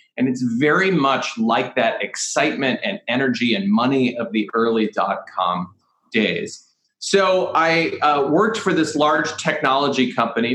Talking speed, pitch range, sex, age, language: 150 wpm, 115-165 Hz, male, 30-49, English